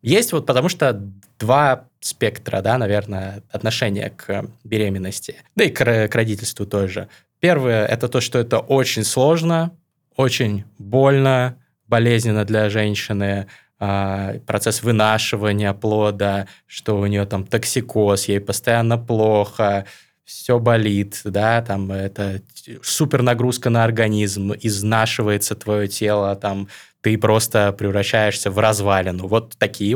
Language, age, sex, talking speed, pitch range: Russian, 20-39, male, 120 wpm, 100-125 Hz